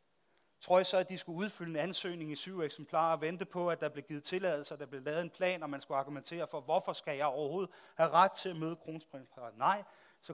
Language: Danish